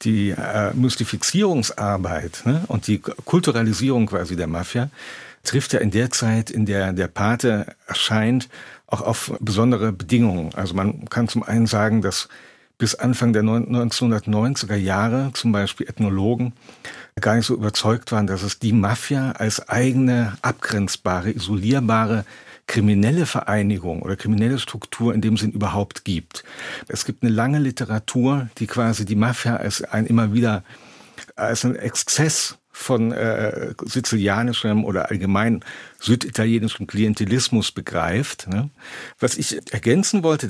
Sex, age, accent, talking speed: male, 50-69, German, 130 wpm